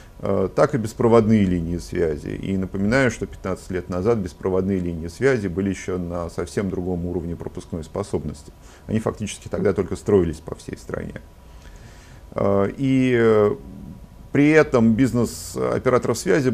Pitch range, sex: 90-115 Hz, male